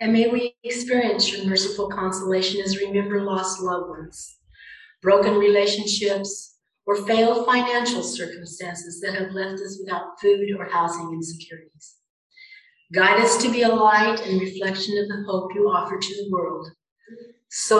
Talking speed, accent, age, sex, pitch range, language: 150 wpm, American, 50-69, female, 180-220 Hz, English